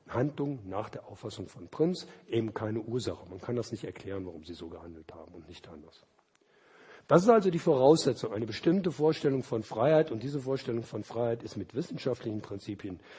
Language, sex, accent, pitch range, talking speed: German, male, German, 105-130 Hz, 185 wpm